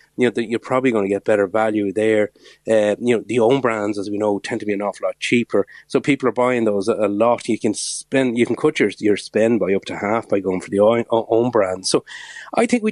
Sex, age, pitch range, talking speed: male, 30-49, 105-140 Hz, 275 wpm